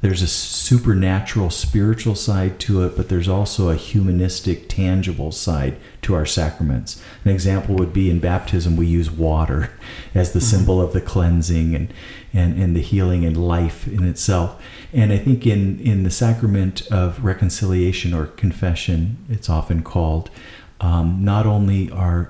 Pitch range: 85-105 Hz